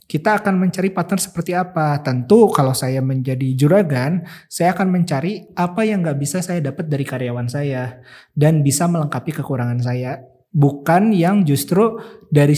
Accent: native